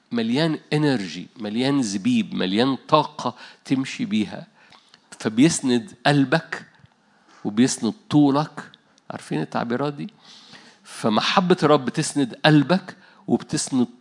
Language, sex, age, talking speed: Arabic, male, 50-69, 85 wpm